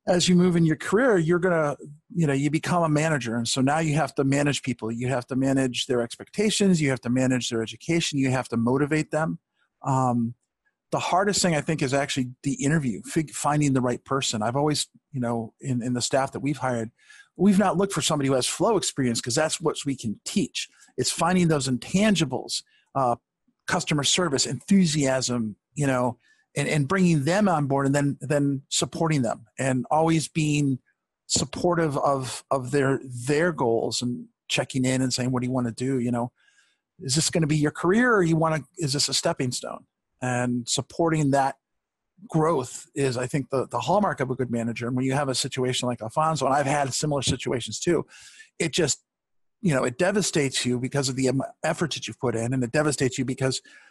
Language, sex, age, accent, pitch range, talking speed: English, male, 40-59, American, 125-160 Hz, 210 wpm